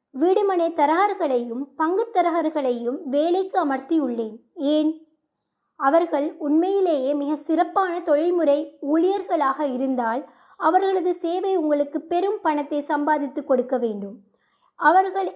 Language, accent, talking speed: Tamil, native, 90 wpm